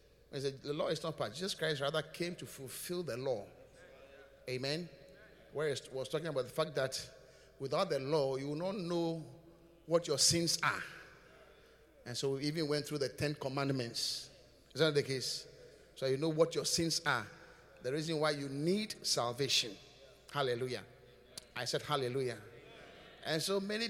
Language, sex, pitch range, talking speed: English, male, 140-180 Hz, 170 wpm